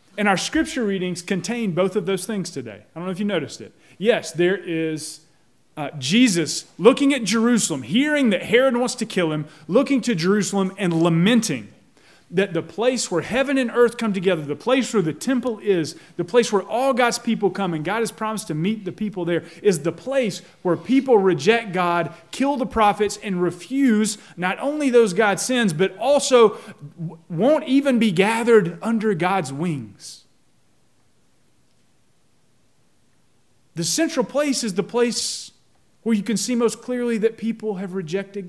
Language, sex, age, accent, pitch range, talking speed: English, male, 30-49, American, 160-225 Hz, 170 wpm